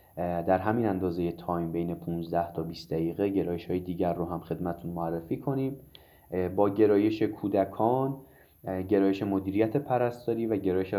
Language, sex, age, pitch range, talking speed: Persian, male, 20-39, 90-105 Hz, 135 wpm